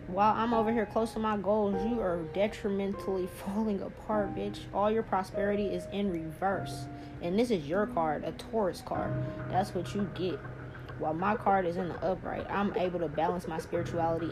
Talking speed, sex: 190 wpm, female